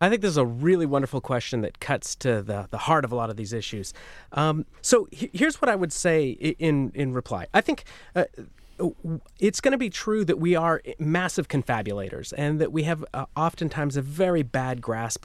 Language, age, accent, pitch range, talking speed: English, 30-49, American, 120-165 Hz, 210 wpm